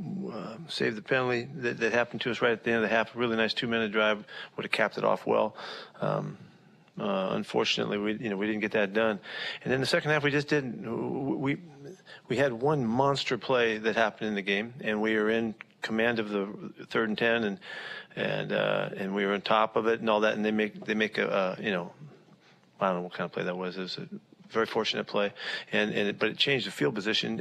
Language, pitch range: English, 105-125 Hz